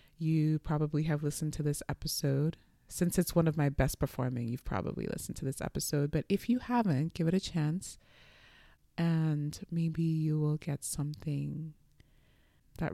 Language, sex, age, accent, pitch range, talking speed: English, female, 20-39, American, 145-170 Hz, 160 wpm